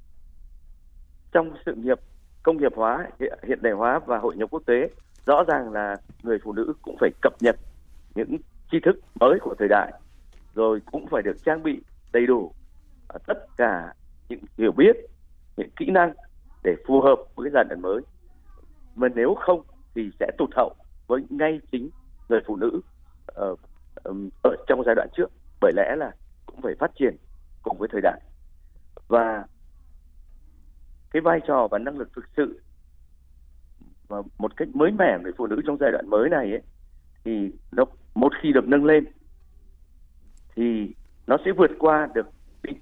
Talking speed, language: 170 wpm, Vietnamese